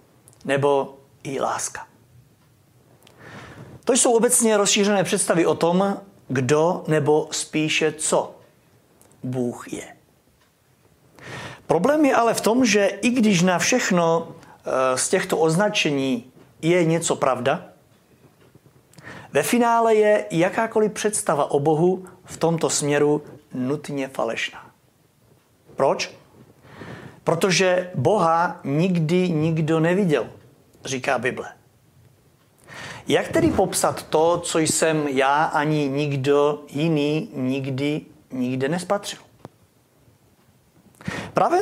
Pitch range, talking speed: 140-195 Hz, 95 wpm